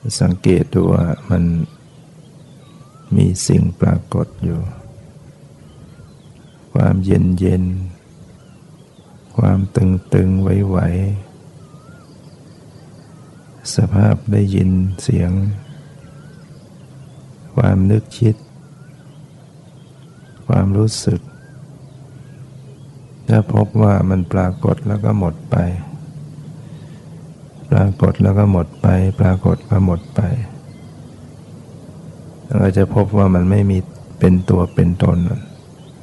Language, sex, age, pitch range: Thai, male, 60-79, 95-145 Hz